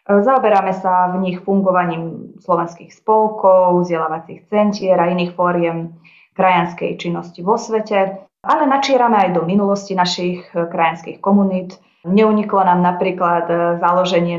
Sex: female